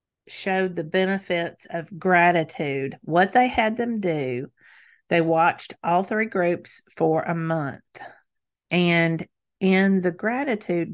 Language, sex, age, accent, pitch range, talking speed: English, female, 40-59, American, 165-200 Hz, 120 wpm